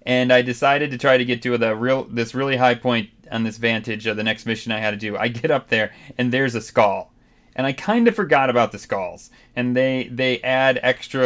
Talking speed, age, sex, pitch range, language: 245 wpm, 30-49, male, 110-125 Hz, English